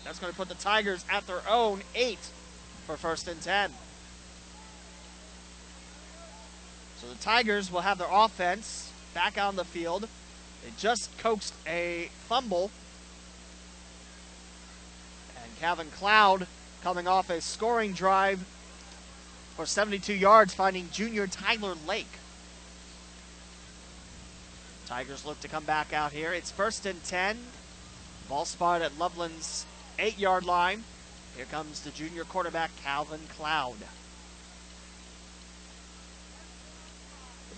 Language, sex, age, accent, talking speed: English, male, 30-49, American, 110 wpm